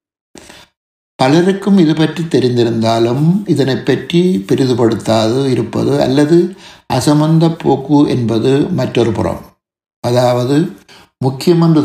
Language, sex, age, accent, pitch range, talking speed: Tamil, male, 60-79, native, 120-150 Hz, 85 wpm